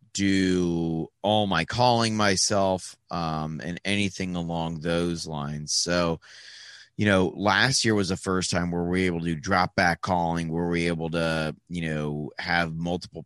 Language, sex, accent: English, male, American